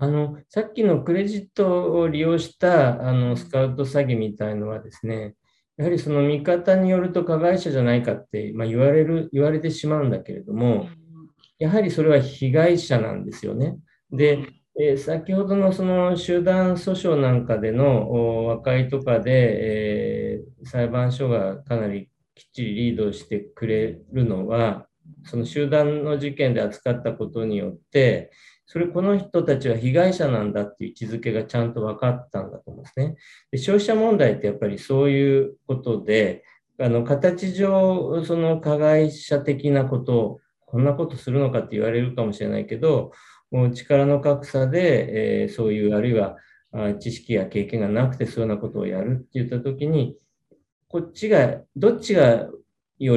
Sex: male